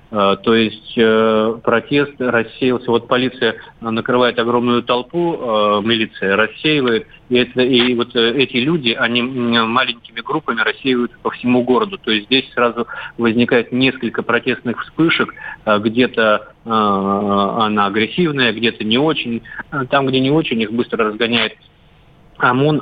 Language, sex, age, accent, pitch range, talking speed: Russian, male, 30-49, native, 110-125 Hz, 120 wpm